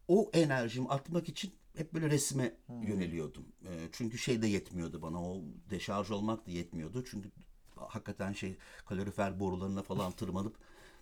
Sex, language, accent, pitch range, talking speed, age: male, Turkish, native, 105-130 Hz, 135 wpm, 60-79